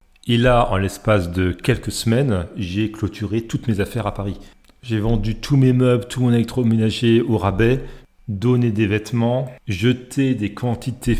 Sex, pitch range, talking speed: male, 110-130 Hz, 160 wpm